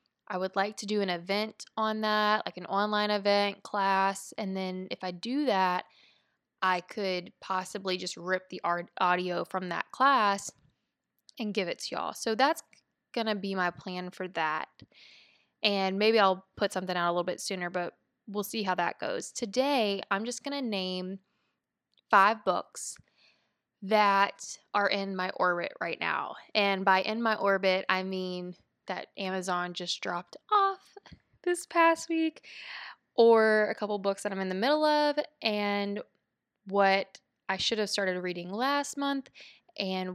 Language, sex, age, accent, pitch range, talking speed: English, female, 20-39, American, 185-220 Hz, 165 wpm